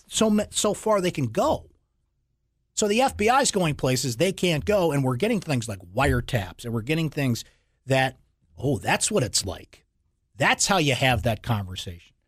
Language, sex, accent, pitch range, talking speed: English, male, American, 125-190 Hz, 180 wpm